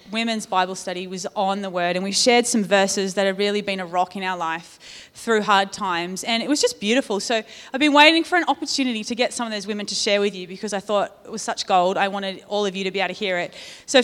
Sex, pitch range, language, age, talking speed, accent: female, 200-300 Hz, English, 30-49, 280 wpm, Australian